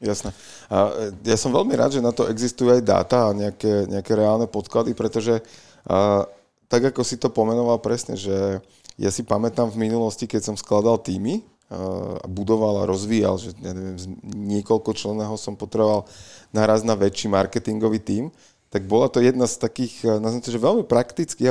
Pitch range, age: 100-120 Hz, 30-49